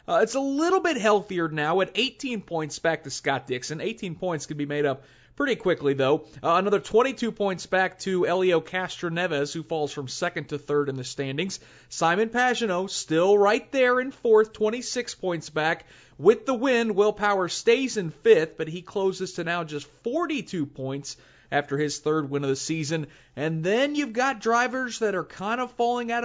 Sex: male